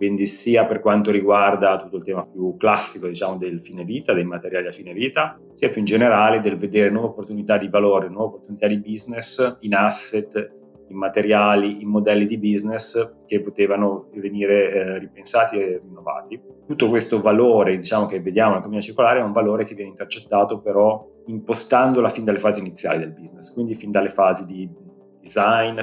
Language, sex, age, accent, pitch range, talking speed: Italian, male, 30-49, native, 95-105 Hz, 175 wpm